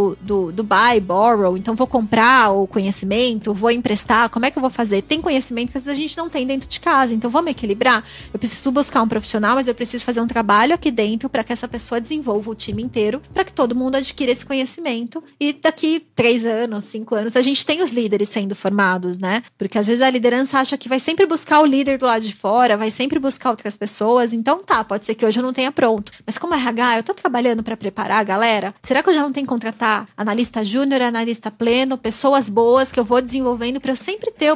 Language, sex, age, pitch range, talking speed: Portuguese, female, 20-39, 220-270 Hz, 235 wpm